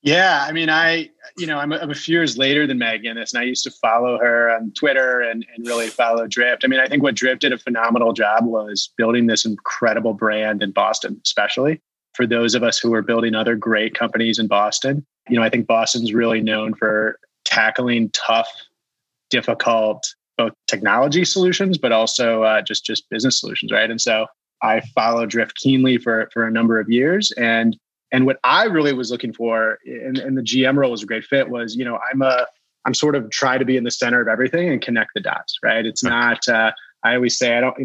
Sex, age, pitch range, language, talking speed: male, 30-49, 115-130 Hz, English, 220 wpm